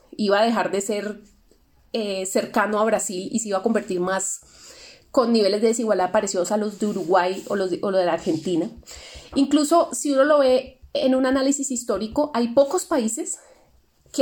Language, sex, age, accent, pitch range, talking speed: Spanish, female, 30-49, Colombian, 205-255 Hz, 190 wpm